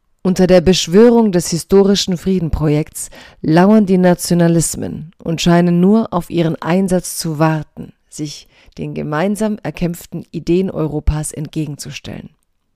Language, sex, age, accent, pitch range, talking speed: German, female, 40-59, German, 160-190 Hz, 115 wpm